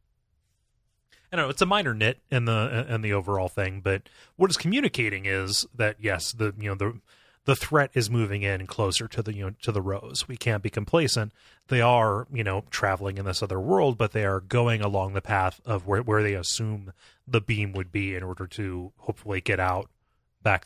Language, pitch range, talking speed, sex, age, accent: English, 95-115 Hz, 210 wpm, male, 30-49, American